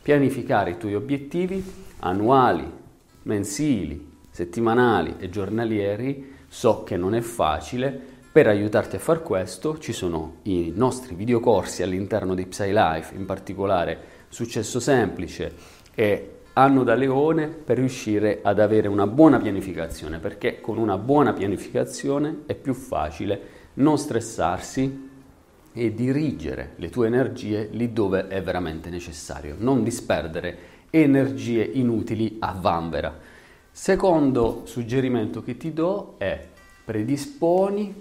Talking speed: 115 wpm